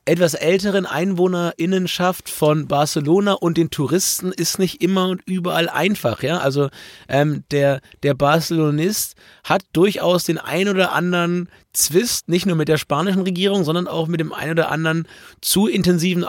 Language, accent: German, German